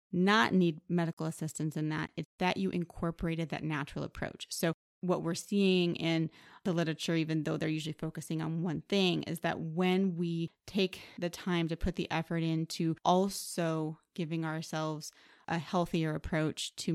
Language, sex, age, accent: English, female, 30-49, American